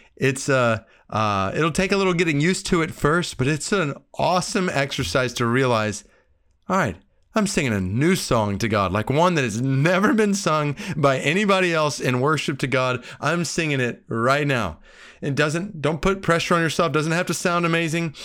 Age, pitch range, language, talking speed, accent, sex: 30-49, 120-165 Hz, English, 195 wpm, American, male